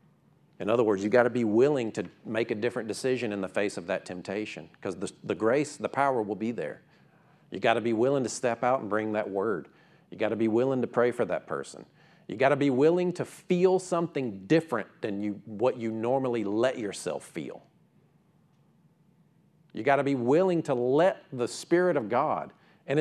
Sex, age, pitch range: male, 50-69, 125-195 Hz